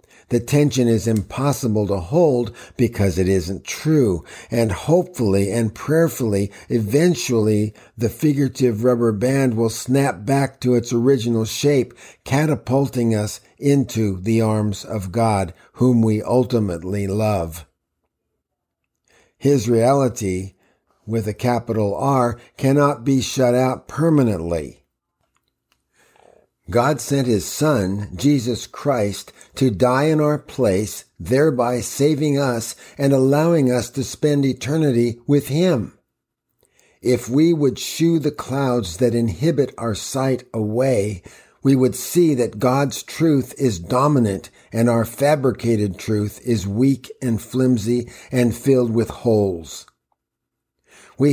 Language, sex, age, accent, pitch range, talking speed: English, male, 50-69, American, 110-140 Hz, 120 wpm